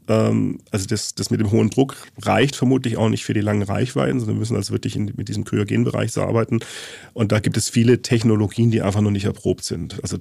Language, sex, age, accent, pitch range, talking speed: German, male, 40-59, German, 110-125 Hz, 235 wpm